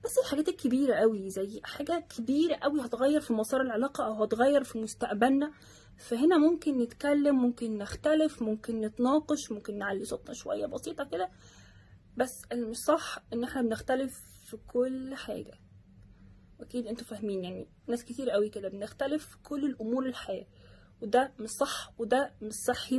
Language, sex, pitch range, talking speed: Arabic, female, 215-285 Hz, 150 wpm